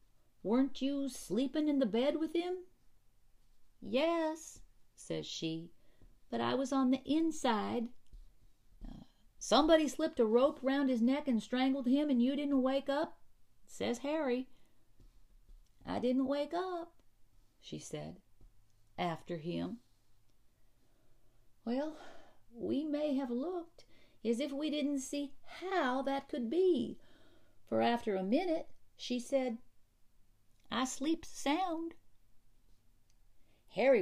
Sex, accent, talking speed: female, American, 120 wpm